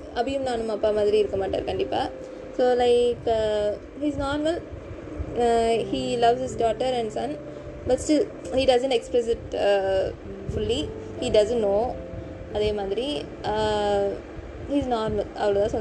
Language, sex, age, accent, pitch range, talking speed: Tamil, female, 20-39, native, 205-260 Hz, 120 wpm